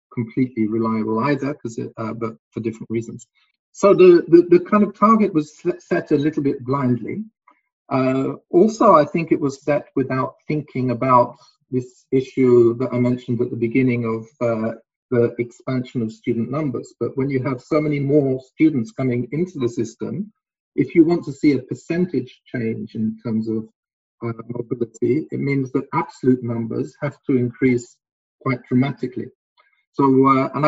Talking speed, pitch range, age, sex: 165 wpm, 120-145 Hz, 50-69, male